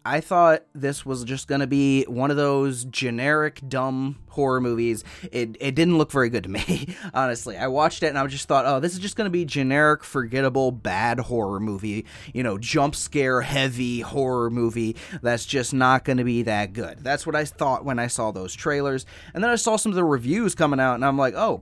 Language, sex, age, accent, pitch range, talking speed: English, male, 20-39, American, 125-160 Hz, 225 wpm